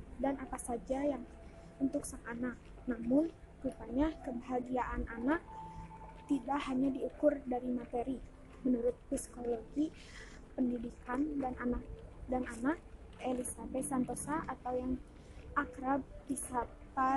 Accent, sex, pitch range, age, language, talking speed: native, female, 250-290 Hz, 20-39, Indonesian, 105 wpm